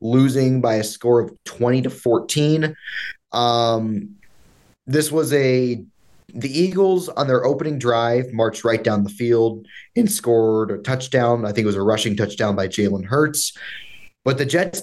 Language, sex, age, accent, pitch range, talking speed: English, male, 20-39, American, 110-140 Hz, 160 wpm